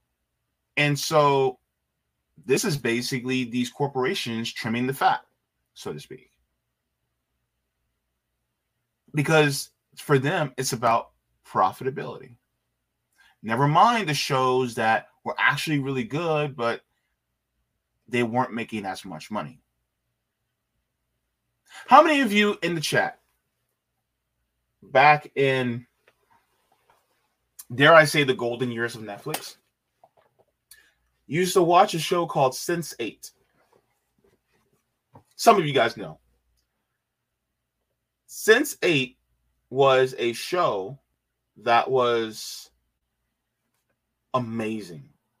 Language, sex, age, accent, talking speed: English, male, 20-39, American, 95 wpm